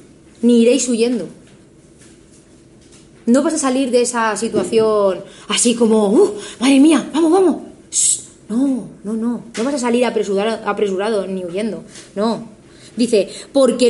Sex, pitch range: female, 230-320 Hz